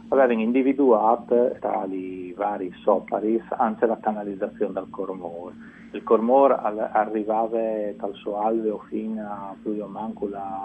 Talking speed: 120 wpm